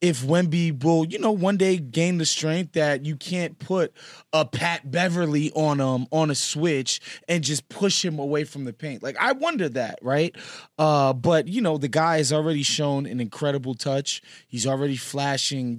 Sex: male